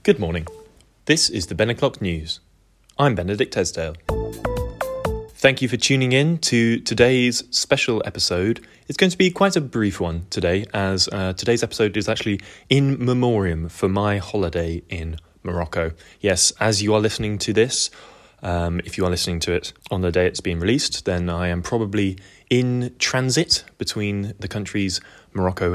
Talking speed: 170 wpm